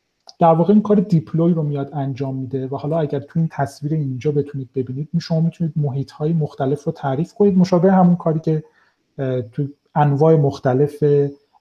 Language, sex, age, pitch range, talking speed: Persian, male, 40-59, 135-165 Hz, 175 wpm